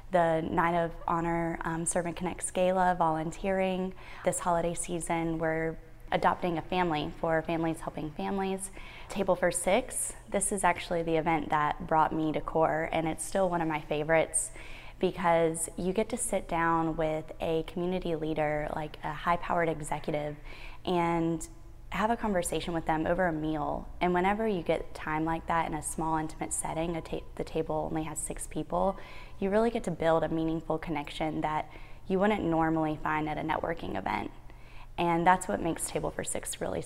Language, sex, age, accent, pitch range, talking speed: English, female, 20-39, American, 160-185 Hz, 175 wpm